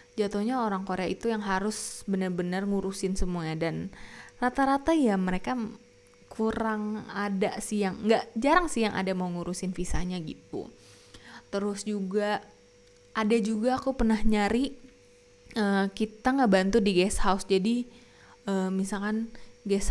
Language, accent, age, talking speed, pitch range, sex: Indonesian, native, 20-39, 135 wpm, 180-215 Hz, female